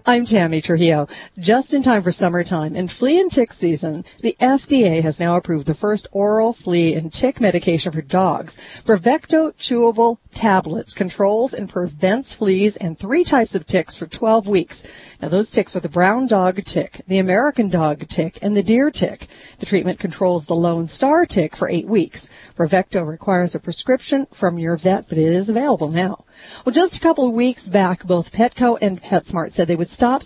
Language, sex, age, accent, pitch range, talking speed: English, female, 40-59, American, 170-230 Hz, 190 wpm